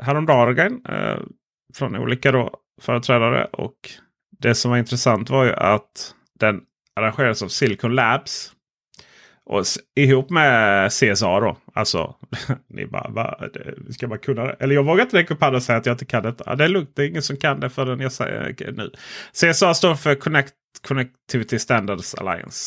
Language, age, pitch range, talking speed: Swedish, 30-49, 100-140 Hz, 180 wpm